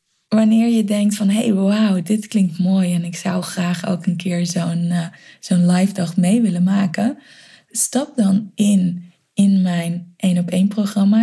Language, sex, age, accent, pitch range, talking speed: Dutch, female, 20-39, Dutch, 170-200 Hz, 165 wpm